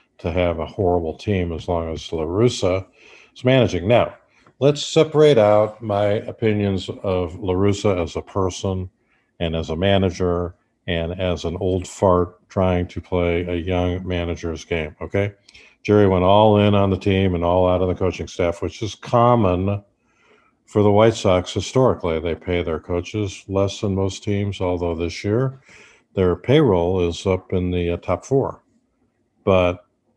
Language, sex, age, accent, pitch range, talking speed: English, male, 50-69, American, 85-105 Hz, 165 wpm